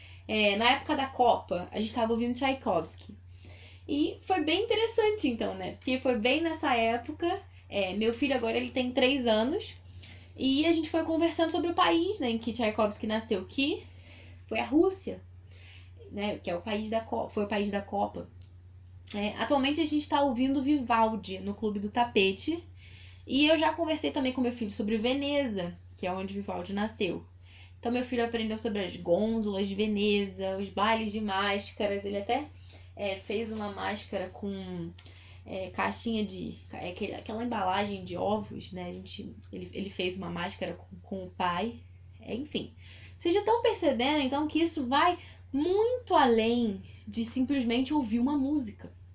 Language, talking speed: Portuguese, 160 wpm